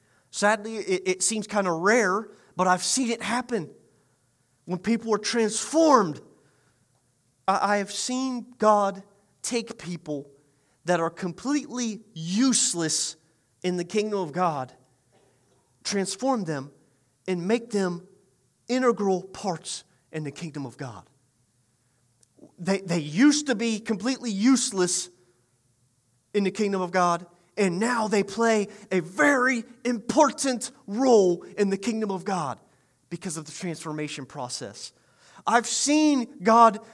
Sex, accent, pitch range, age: male, American, 150-235 Hz, 30-49